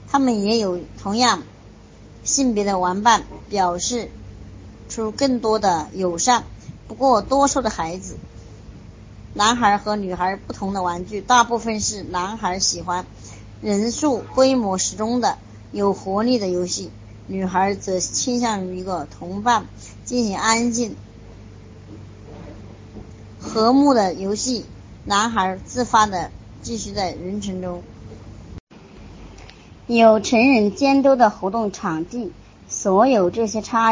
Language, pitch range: Chinese, 165-225 Hz